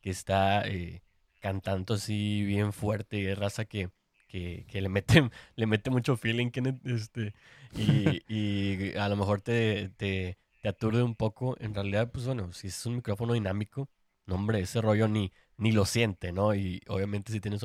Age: 20-39